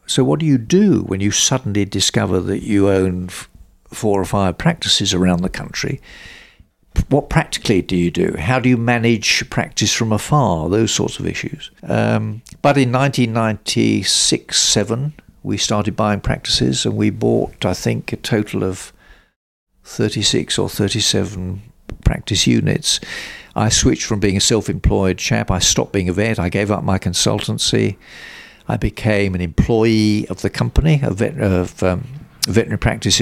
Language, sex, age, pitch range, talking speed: English, male, 60-79, 95-115 Hz, 155 wpm